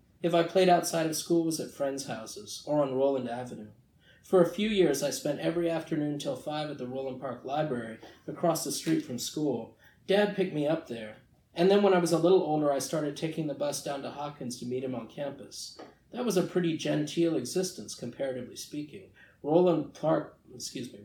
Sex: male